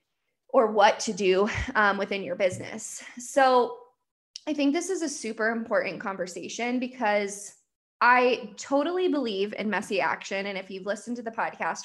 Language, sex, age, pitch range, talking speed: English, female, 20-39, 200-260 Hz, 155 wpm